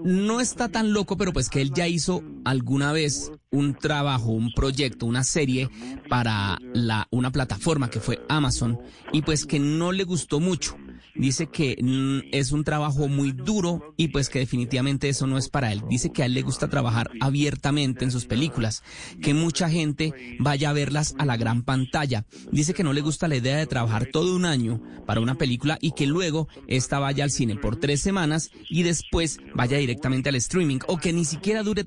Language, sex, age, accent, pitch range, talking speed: Spanish, male, 30-49, Colombian, 125-155 Hz, 200 wpm